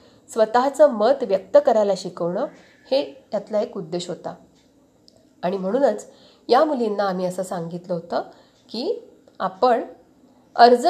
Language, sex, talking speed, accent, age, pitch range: Marathi, female, 115 wpm, native, 30-49, 190-250 Hz